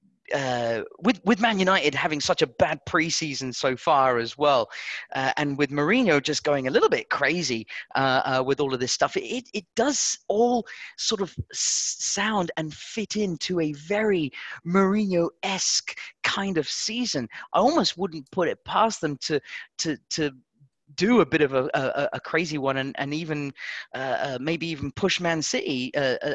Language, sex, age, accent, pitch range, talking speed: English, male, 30-49, British, 140-190 Hz, 180 wpm